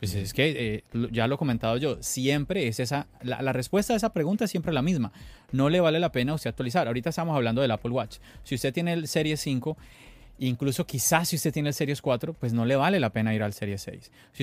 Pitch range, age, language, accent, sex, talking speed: 125-165 Hz, 30-49, Spanish, Colombian, male, 250 wpm